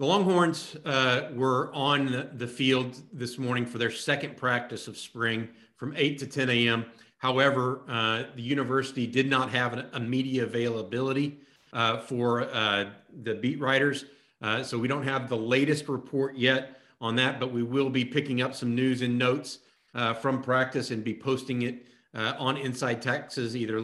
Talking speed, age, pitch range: 175 wpm, 40-59, 120-145 Hz